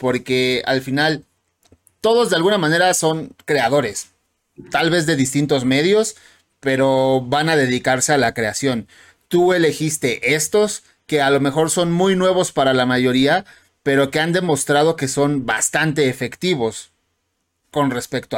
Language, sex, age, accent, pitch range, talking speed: Spanish, male, 30-49, Mexican, 130-160 Hz, 145 wpm